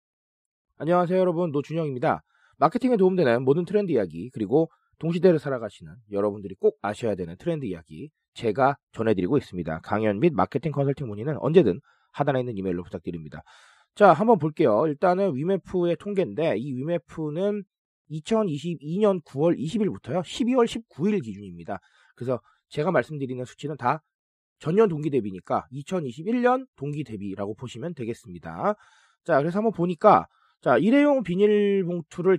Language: Korean